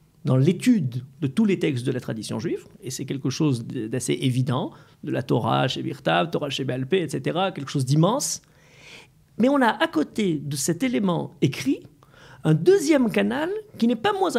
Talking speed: 185 wpm